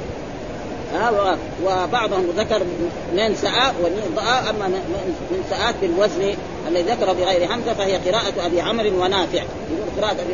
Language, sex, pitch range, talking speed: Arabic, female, 180-230 Hz, 110 wpm